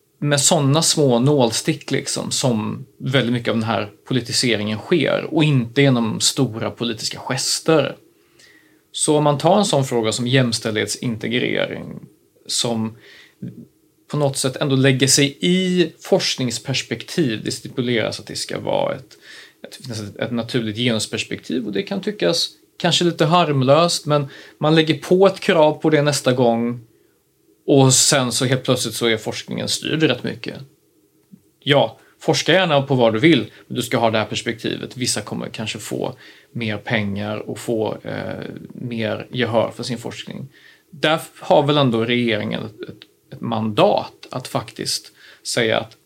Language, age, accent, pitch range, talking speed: Swedish, 30-49, native, 115-150 Hz, 150 wpm